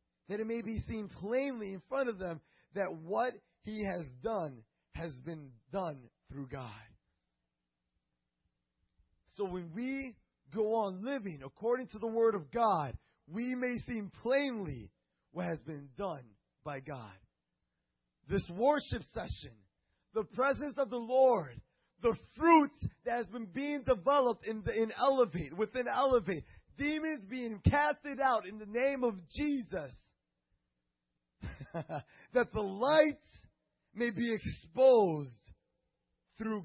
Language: English